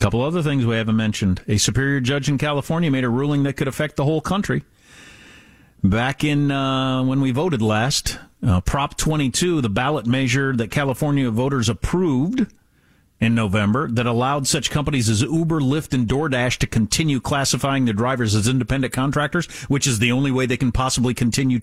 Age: 50-69